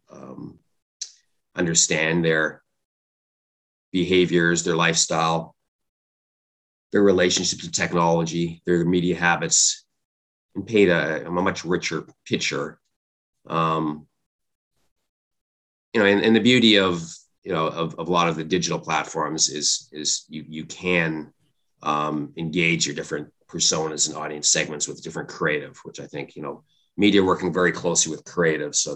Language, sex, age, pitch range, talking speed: English, male, 30-49, 80-95 Hz, 135 wpm